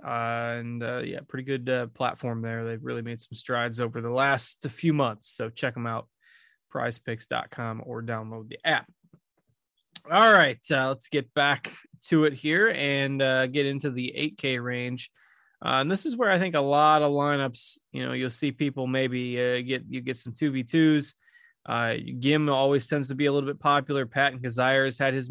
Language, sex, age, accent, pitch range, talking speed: English, male, 20-39, American, 125-150 Hz, 195 wpm